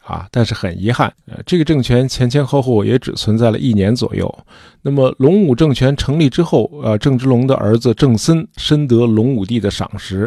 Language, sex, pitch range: Chinese, male, 110-145 Hz